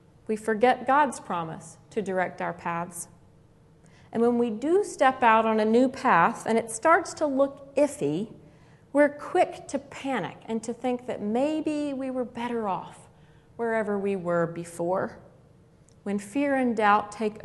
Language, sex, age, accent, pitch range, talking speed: English, female, 40-59, American, 175-250 Hz, 160 wpm